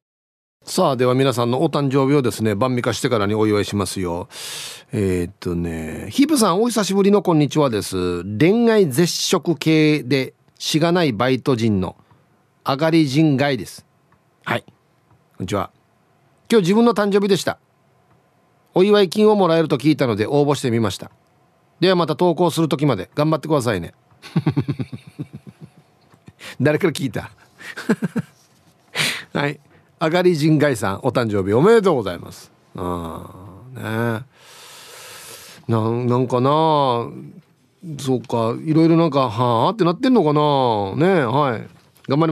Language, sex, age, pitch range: Japanese, male, 40-59, 125-190 Hz